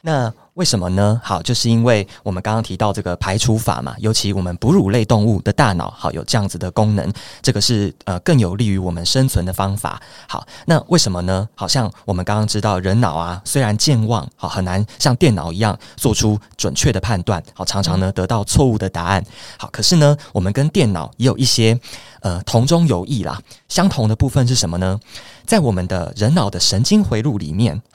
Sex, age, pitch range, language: male, 30-49, 95-125 Hz, Chinese